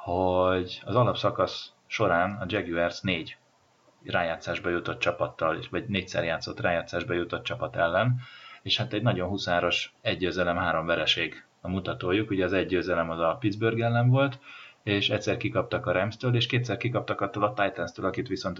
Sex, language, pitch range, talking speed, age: male, Hungarian, 85-115 Hz, 155 wpm, 30-49